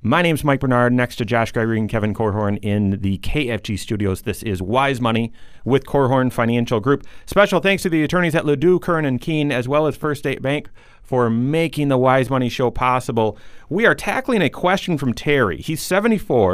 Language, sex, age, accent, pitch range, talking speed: English, male, 40-59, American, 115-155 Hz, 200 wpm